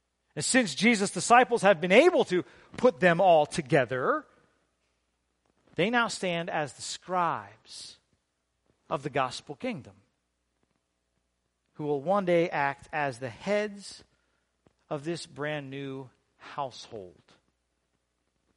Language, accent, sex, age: English, American, male, 40-59